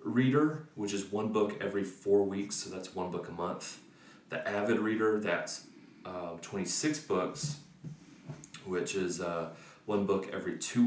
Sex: male